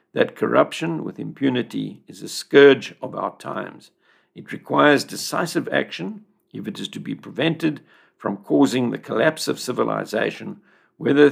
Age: 60-79